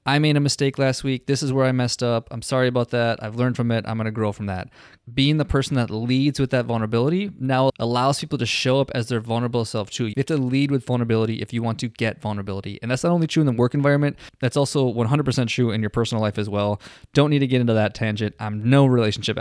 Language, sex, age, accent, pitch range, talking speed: English, male, 20-39, American, 110-130 Hz, 265 wpm